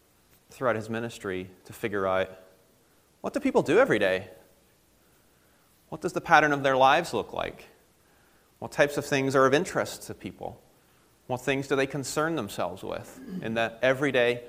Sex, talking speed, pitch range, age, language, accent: male, 165 wpm, 105-135 Hz, 30-49, English, American